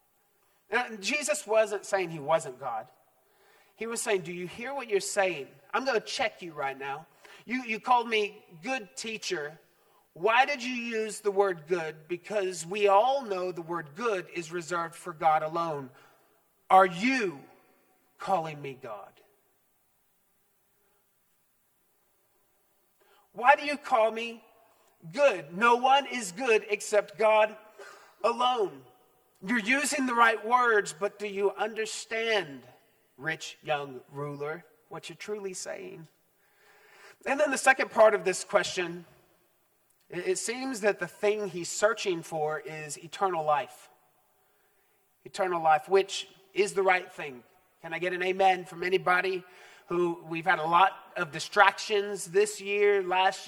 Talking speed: 140 wpm